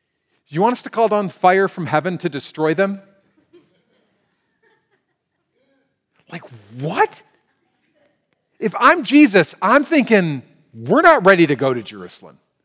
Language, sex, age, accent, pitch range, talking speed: English, male, 40-59, American, 175-245 Hz, 125 wpm